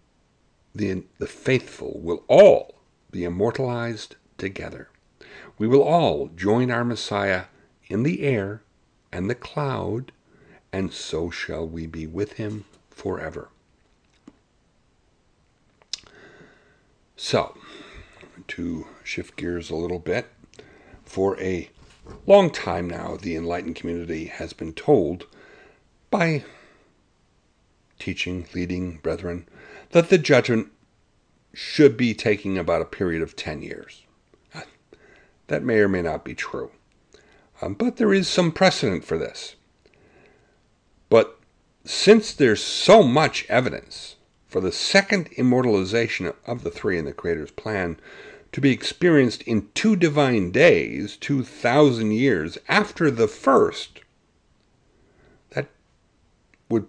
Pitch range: 90-140 Hz